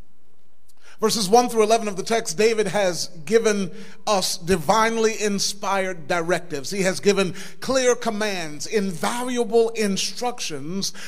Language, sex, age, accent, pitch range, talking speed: English, male, 40-59, American, 185-225 Hz, 115 wpm